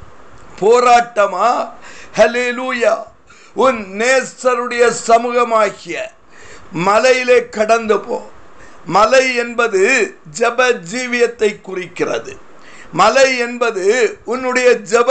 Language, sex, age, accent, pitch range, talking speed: Tamil, male, 60-79, native, 225-260 Hz, 65 wpm